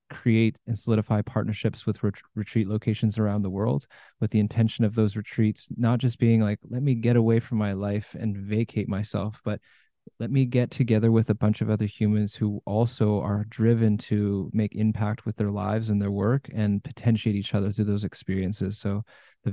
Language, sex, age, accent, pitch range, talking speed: English, male, 20-39, American, 105-115 Hz, 195 wpm